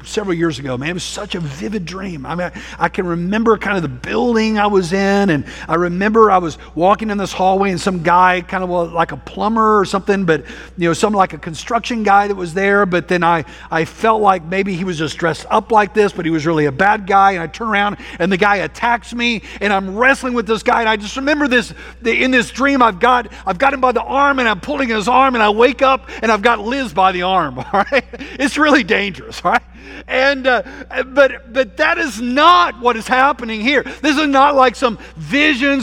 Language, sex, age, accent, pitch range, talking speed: English, male, 50-69, American, 195-265 Hz, 240 wpm